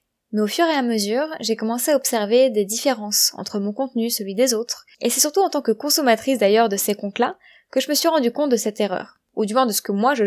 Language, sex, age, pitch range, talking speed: French, female, 20-39, 205-260 Hz, 275 wpm